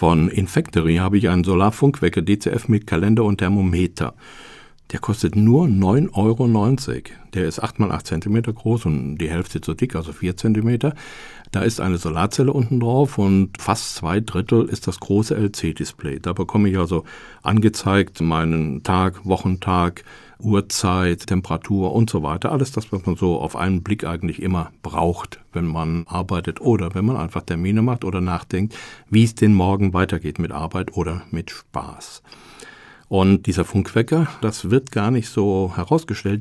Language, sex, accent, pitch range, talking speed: German, male, German, 90-115 Hz, 165 wpm